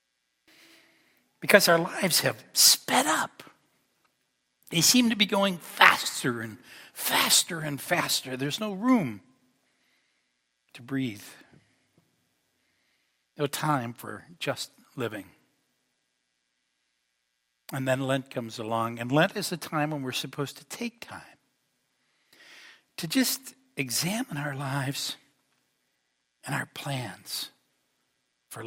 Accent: American